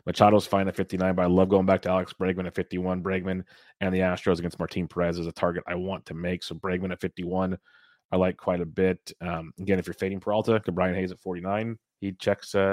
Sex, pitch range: male, 90-100 Hz